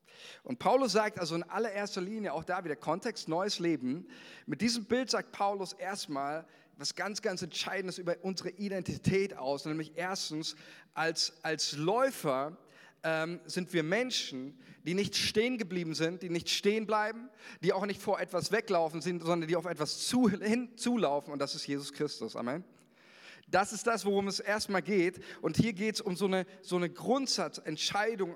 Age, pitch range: 40-59, 150-205 Hz